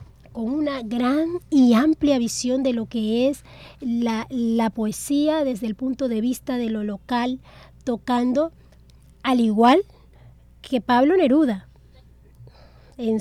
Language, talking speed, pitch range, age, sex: Spanish, 125 wpm, 225-285 Hz, 30-49, female